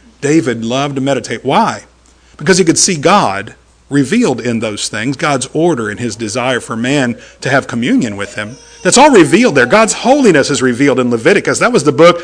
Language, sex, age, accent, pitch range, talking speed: English, male, 50-69, American, 120-195 Hz, 195 wpm